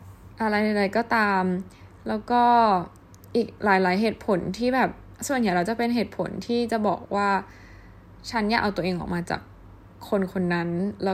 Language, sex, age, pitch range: Thai, female, 10-29, 160-215 Hz